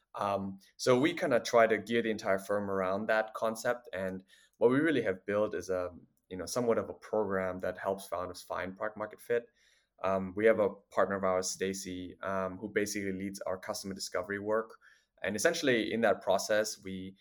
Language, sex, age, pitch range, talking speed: English, male, 20-39, 95-105 Hz, 200 wpm